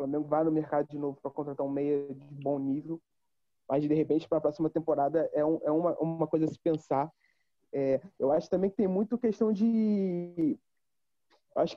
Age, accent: 20-39, Brazilian